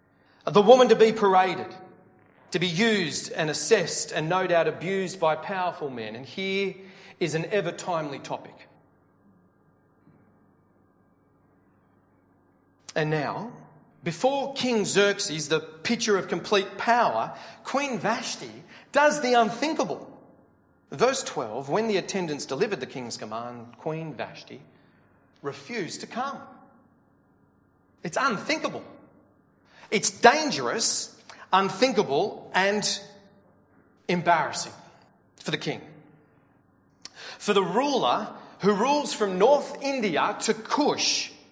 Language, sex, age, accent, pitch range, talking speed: English, male, 40-59, Australian, 155-230 Hz, 105 wpm